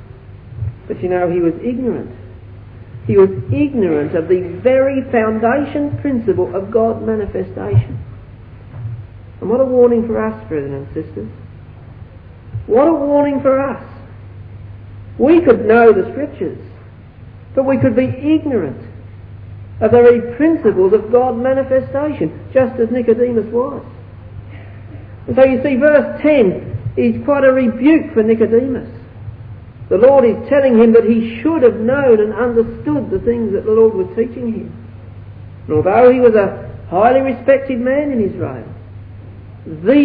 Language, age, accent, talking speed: English, 60-79, British, 140 wpm